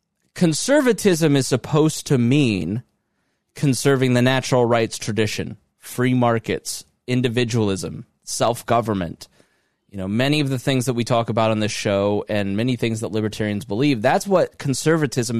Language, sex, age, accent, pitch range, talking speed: English, male, 20-39, American, 115-155 Hz, 140 wpm